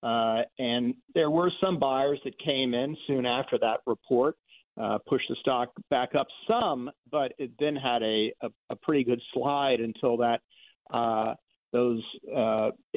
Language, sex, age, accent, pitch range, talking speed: English, male, 50-69, American, 120-155 Hz, 160 wpm